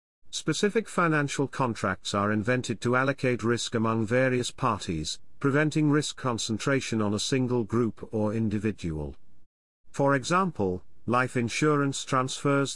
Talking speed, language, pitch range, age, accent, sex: 120 wpm, English, 105-140 Hz, 50-69, British, male